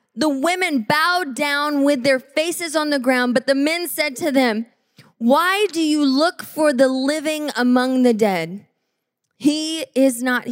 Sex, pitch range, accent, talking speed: female, 220-270 Hz, American, 165 wpm